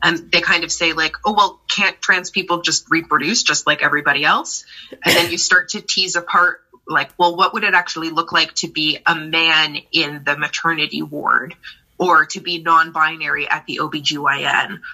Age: 20-39